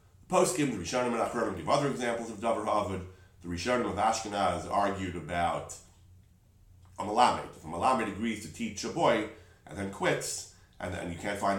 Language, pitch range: English, 90-125 Hz